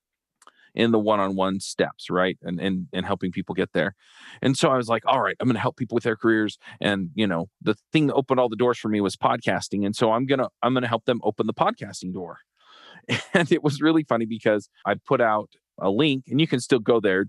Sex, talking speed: male, 245 wpm